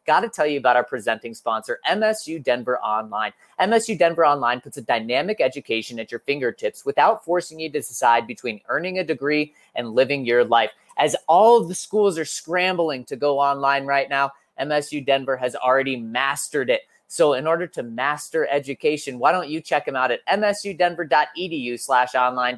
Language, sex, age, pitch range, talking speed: English, male, 20-39, 135-215 Hz, 180 wpm